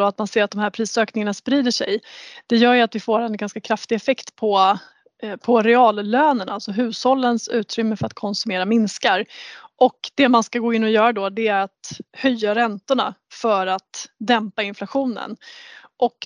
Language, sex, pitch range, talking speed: Swedish, female, 205-240 Hz, 180 wpm